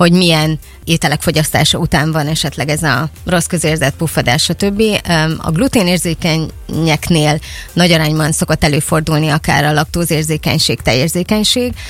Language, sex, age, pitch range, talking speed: Hungarian, female, 20-39, 150-170 Hz, 120 wpm